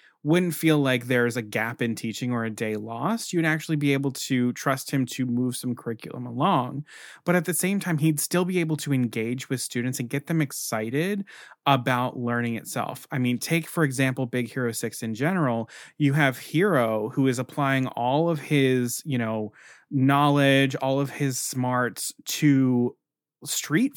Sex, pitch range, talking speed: male, 120-155 Hz, 180 wpm